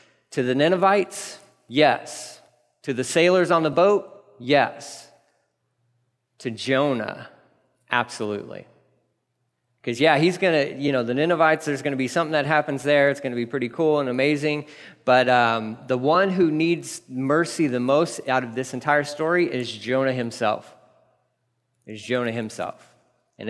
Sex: male